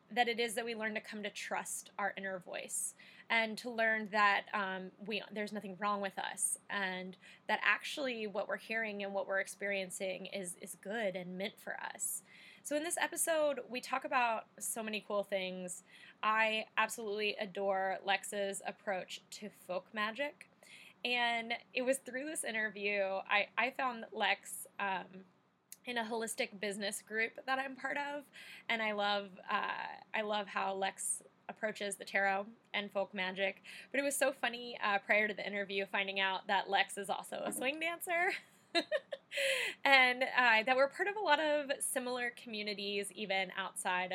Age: 20-39